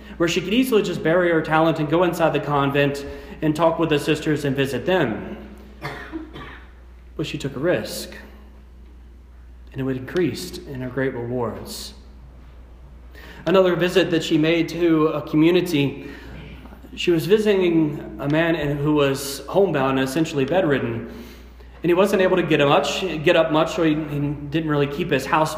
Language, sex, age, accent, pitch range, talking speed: English, male, 30-49, American, 130-170 Hz, 160 wpm